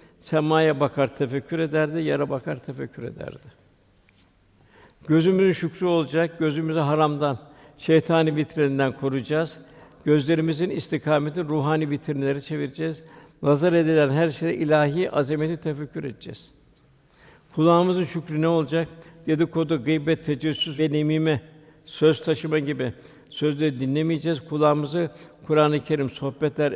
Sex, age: male, 60-79